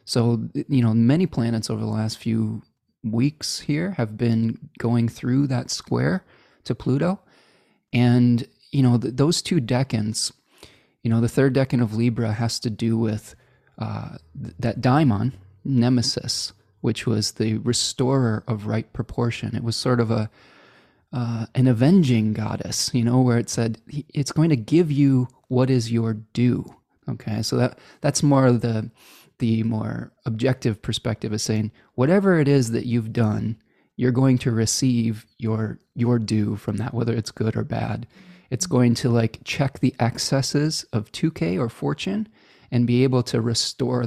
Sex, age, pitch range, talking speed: male, 20-39, 115-130 Hz, 160 wpm